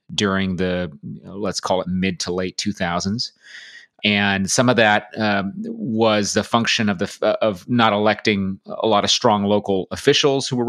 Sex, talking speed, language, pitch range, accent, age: male, 165 wpm, English, 95-115 Hz, American, 30-49